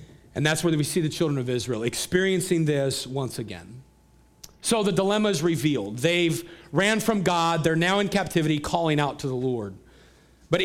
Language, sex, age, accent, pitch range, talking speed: English, male, 40-59, American, 140-195 Hz, 180 wpm